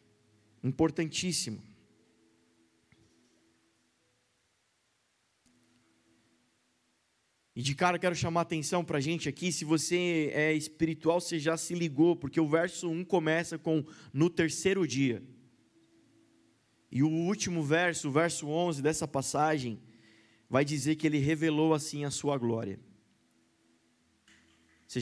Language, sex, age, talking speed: Portuguese, male, 20-39, 115 wpm